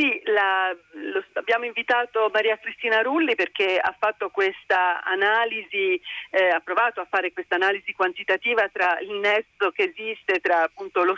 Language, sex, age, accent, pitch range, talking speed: Italian, female, 40-59, native, 180-235 Hz, 150 wpm